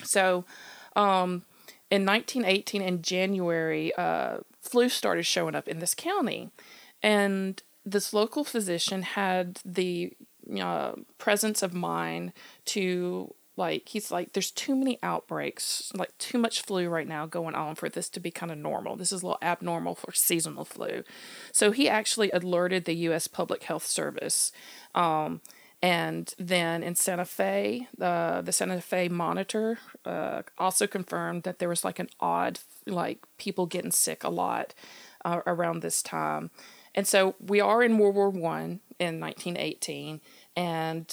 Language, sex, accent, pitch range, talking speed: English, female, American, 170-205 Hz, 155 wpm